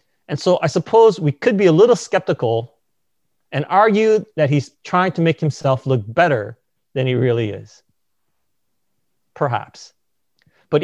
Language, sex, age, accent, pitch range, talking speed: English, male, 30-49, American, 130-195 Hz, 145 wpm